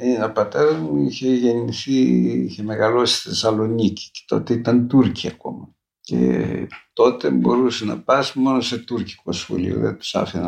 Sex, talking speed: male, 150 wpm